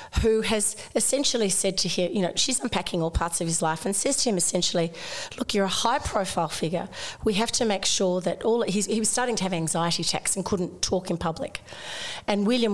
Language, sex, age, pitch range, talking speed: English, female, 40-59, 165-215 Hz, 220 wpm